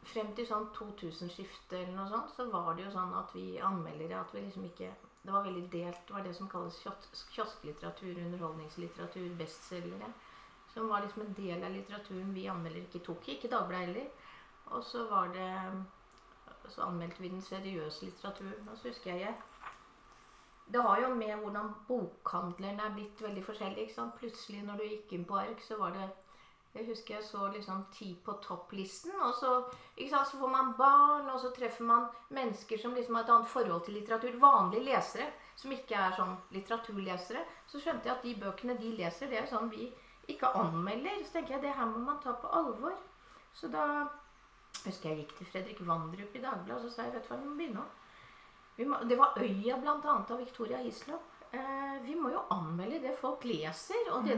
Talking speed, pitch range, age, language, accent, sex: 190 wpm, 190-250 Hz, 30-49, Danish, Swedish, female